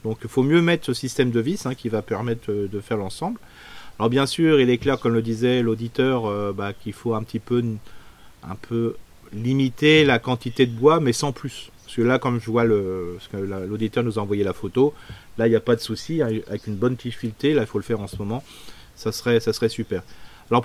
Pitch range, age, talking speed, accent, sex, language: 115-140 Hz, 40-59, 245 wpm, French, male, French